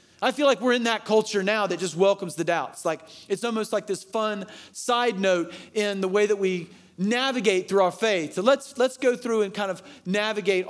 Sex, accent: male, American